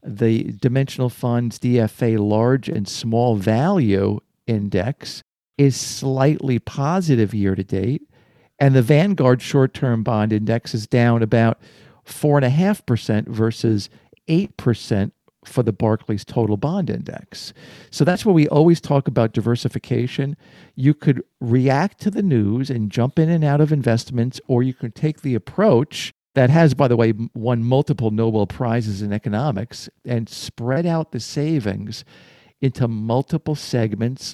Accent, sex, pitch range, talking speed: American, male, 115-145 Hz, 140 wpm